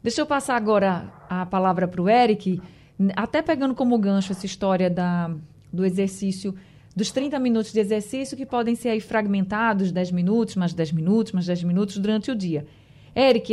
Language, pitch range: Portuguese, 185-250 Hz